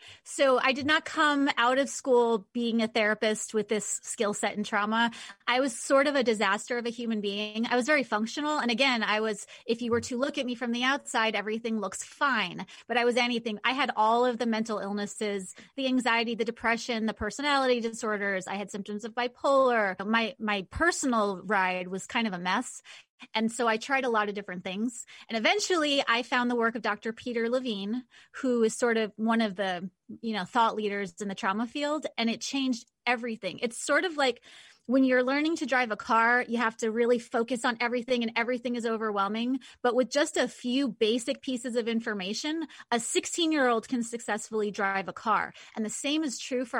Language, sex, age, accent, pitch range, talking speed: English, female, 30-49, American, 215-255 Hz, 210 wpm